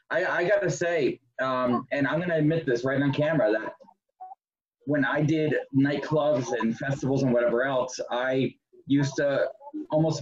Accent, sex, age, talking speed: American, male, 30-49, 165 wpm